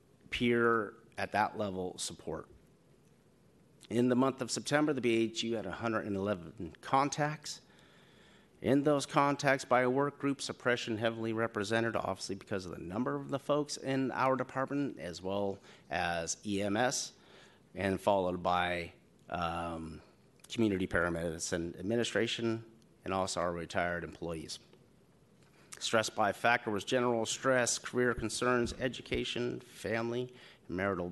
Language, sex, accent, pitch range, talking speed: English, male, American, 90-125 Hz, 125 wpm